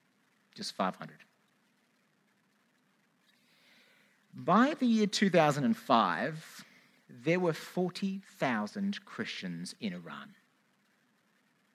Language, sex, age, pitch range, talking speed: English, male, 50-69, 195-230 Hz, 55 wpm